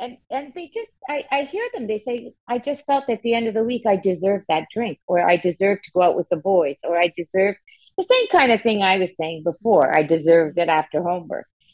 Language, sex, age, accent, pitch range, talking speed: English, female, 50-69, American, 175-230 Hz, 250 wpm